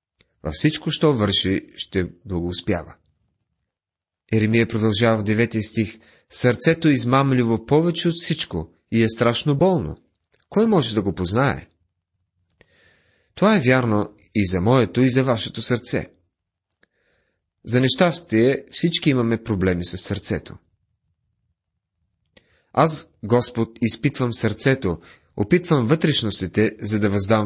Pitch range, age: 95-135 Hz, 30-49